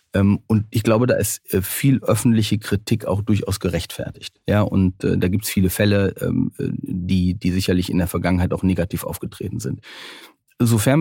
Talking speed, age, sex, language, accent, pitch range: 160 wpm, 40-59, male, German, German, 95-115 Hz